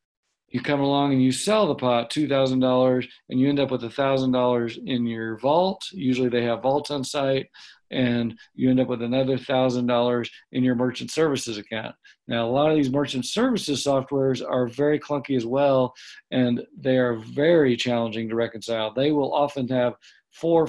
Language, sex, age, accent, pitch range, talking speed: English, male, 50-69, American, 120-145 Hz, 180 wpm